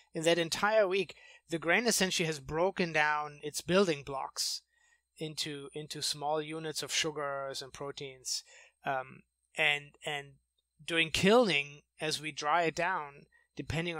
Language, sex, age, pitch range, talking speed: English, male, 20-39, 140-165 Hz, 135 wpm